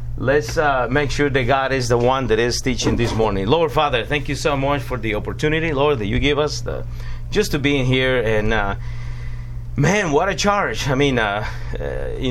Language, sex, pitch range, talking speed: English, male, 115-145 Hz, 220 wpm